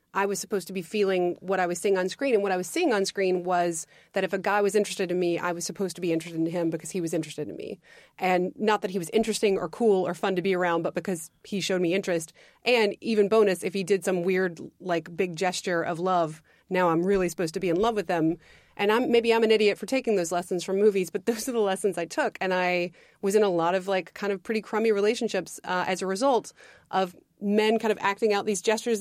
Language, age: English, 30-49